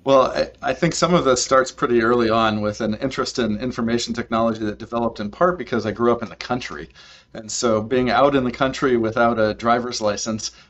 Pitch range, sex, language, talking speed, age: 105-125 Hz, male, English, 220 wpm, 40-59